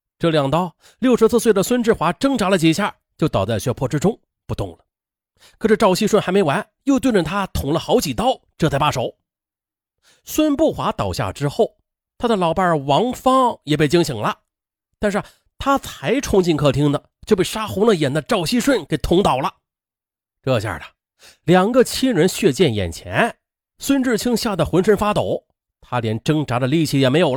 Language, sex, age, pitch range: Chinese, male, 30-49, 145-245 Hz